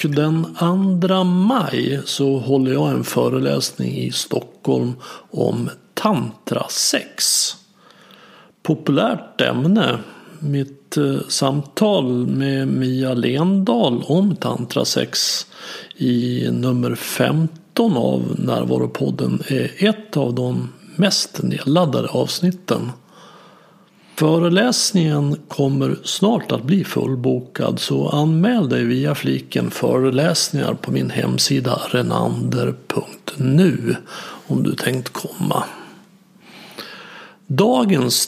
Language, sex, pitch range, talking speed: Swedish, male, 125-190 Hz, 90 wpm